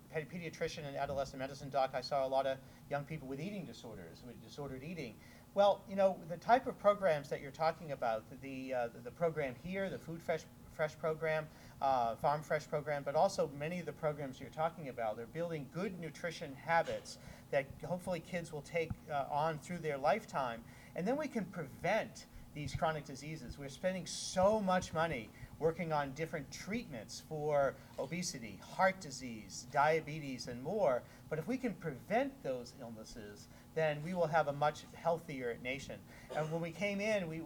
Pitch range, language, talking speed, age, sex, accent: 135-170 Hz, English, 180 wpm, 40-59, male, American